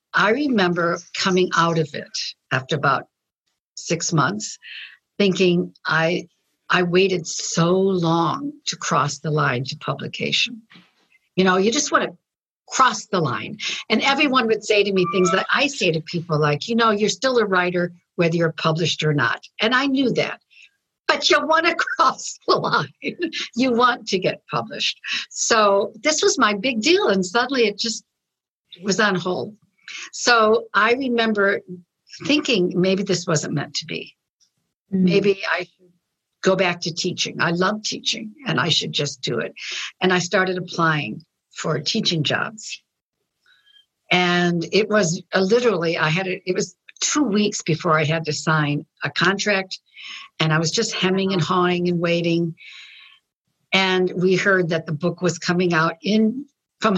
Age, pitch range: 60-79, 170-225 Hz